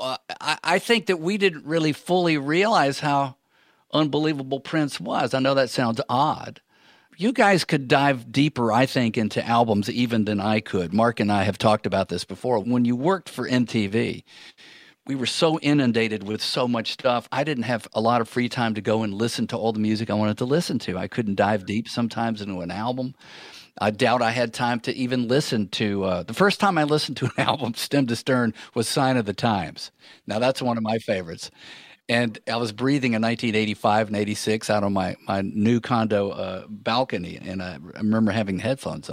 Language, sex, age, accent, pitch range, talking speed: English, male, 50-69, American, 110-135 Hz, 205 wpm